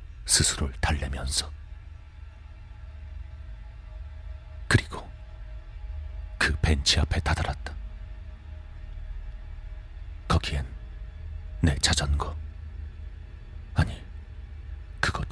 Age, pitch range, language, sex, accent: 40-59, 75-85 Hz, Korean, male, native